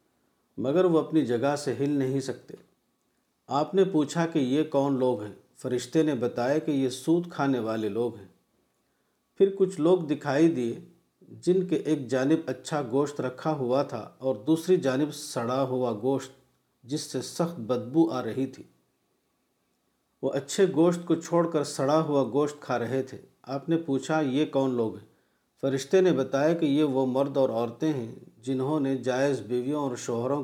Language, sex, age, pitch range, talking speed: Urdu, male, 50-69, 130-155 Hz, 175 wpm